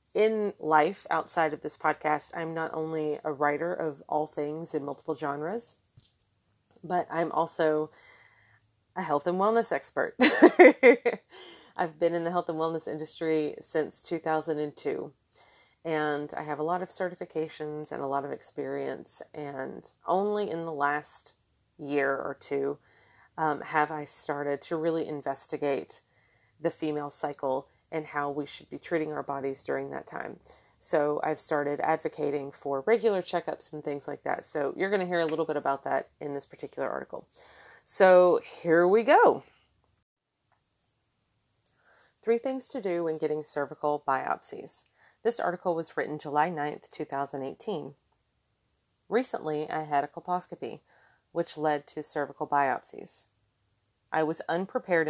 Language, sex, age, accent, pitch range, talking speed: English, female, 30-49, American, 145-165 Hz, 145 wpm